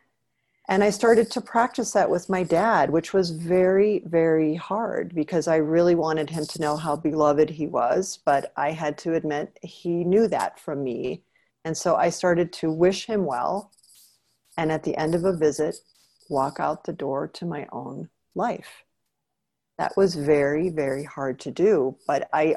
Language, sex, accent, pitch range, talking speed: English, female, American, 150-185 Hz, 180 wpm